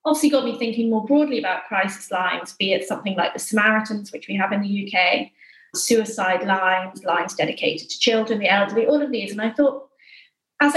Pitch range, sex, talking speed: 205-250 Hz, female, 200 wpm